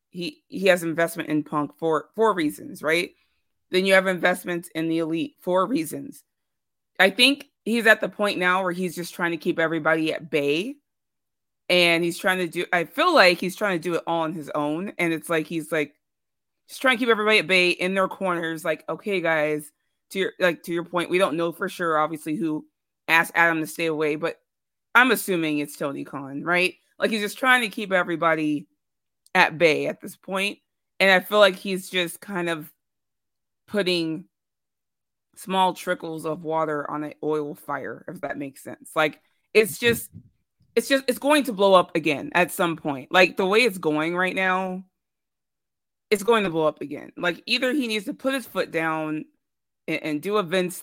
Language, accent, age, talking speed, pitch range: English, American, 30-49, 200 wpm, 160-200 Hz